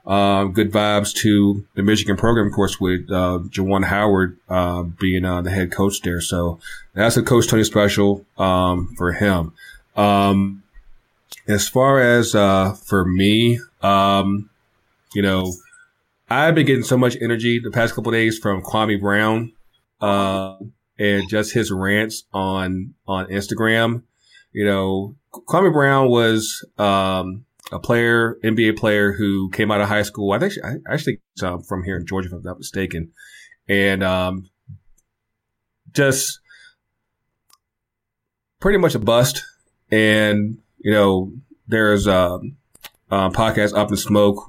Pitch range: 95-110 Hz